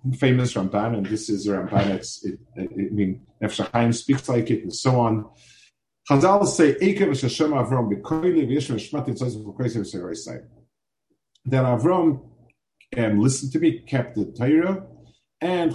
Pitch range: 105-140 Hz